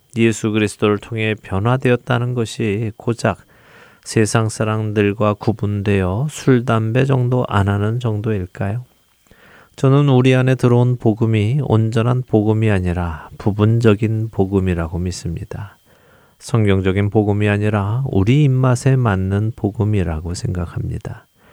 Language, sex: Korean, male